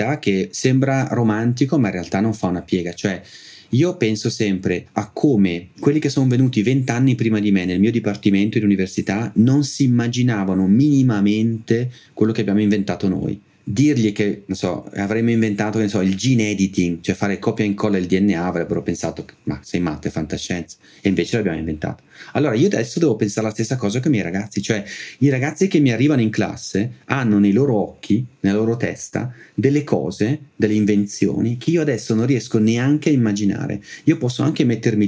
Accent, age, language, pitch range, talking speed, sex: native, 30-49, Italian, 95-115 Hz, 190 wpm, male